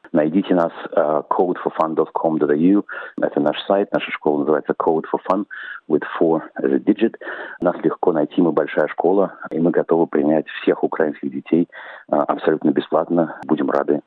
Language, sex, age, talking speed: Russian, male, 40-59, 145 wpm